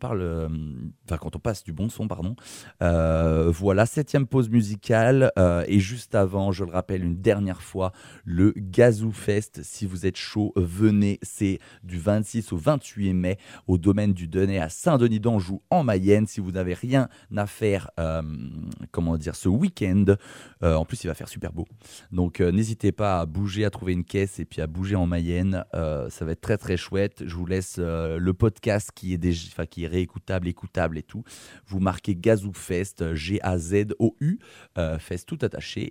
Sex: male